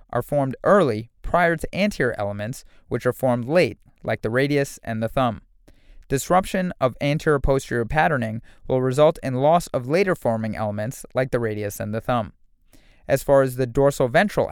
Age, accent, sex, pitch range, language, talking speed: 30-49, American, male, 115-145 Hz, English, 165 wpm